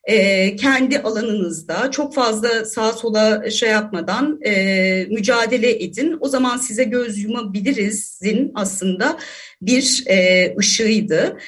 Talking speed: 110 wpm